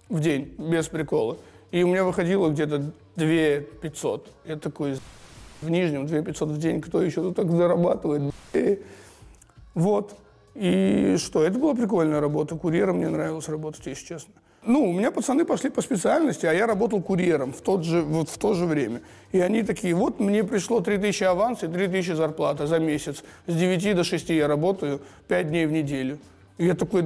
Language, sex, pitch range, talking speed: Russian, male, 155-190 Hz, 180 wpm